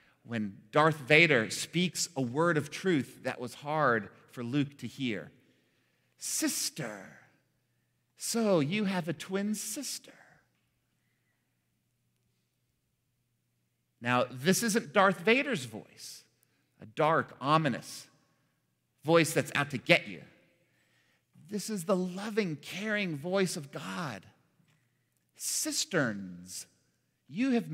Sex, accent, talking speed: male, American, 105 wpm